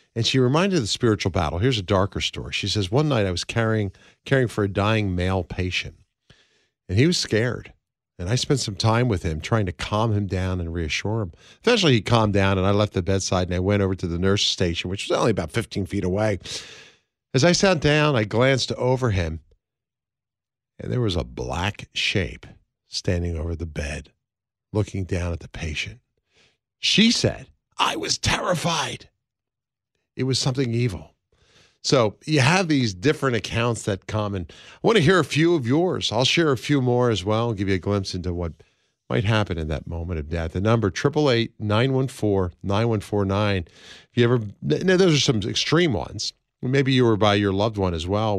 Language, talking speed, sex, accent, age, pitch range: English, 205 wpm, male, American, 50-69, 95-125 Hz